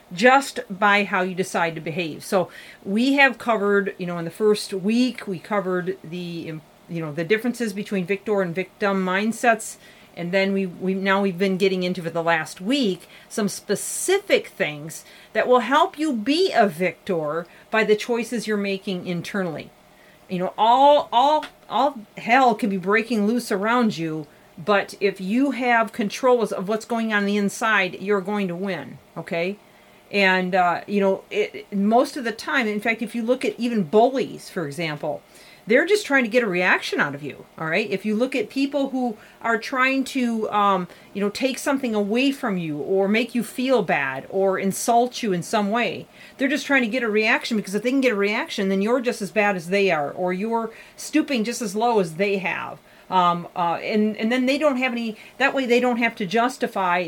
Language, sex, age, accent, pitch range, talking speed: English, female, 40-59, American, 190-240 Hz, 200 wpm